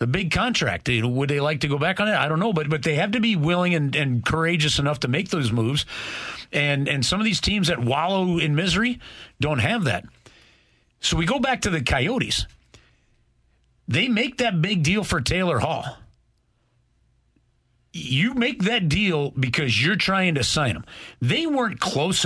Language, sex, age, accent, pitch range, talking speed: English, male, 40-59, American, 120-165 Hz, 190 wpm